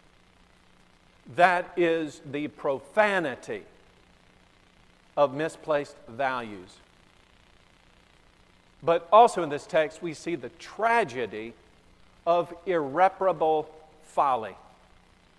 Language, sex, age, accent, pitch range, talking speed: English, male, 50-69, American, 160-235 Hz, 75 wpm